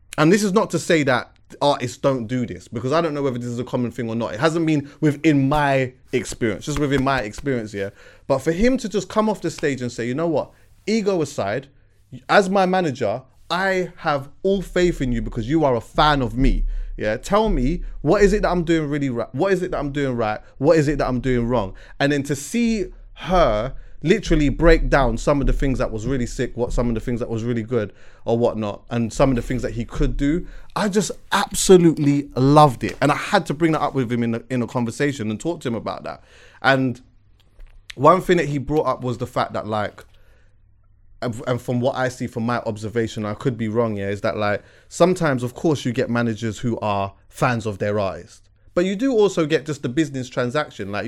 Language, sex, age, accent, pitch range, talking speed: English, male, 20-39, British, 115-155 Hz, 240 wpm